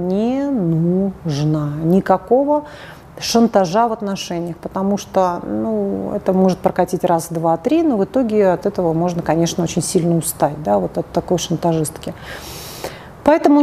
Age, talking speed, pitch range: 30-49, 130 wpm, 170-230 Hz